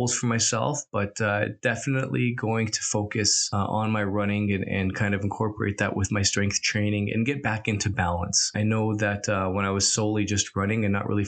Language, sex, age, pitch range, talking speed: English, male, 20-39, 95-110 Hz, 215 wpm